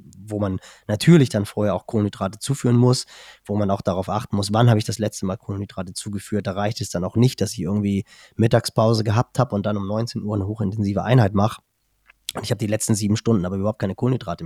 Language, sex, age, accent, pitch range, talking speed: German, male, 20-39, German, 100-120 Hz, 230 wpm